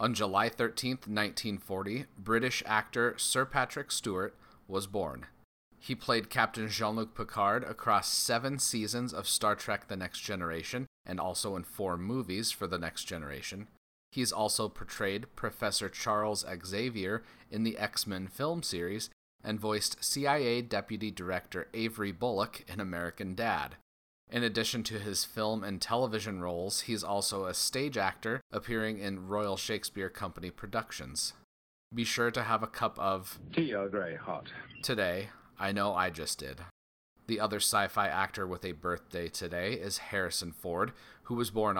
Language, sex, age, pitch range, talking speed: English, male, 30-49, 95-115 Hz, 150 wpm